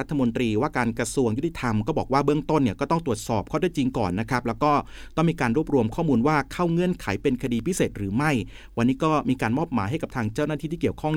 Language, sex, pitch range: Thai, male, 120-155 Hz